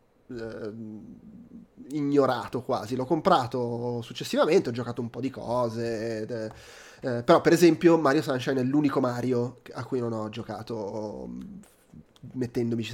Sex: male